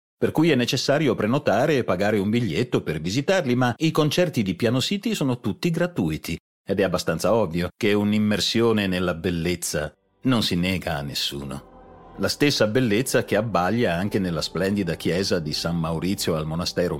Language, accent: Italian, native